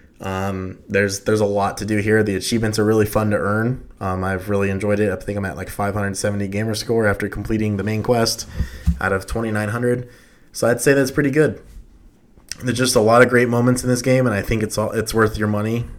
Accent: American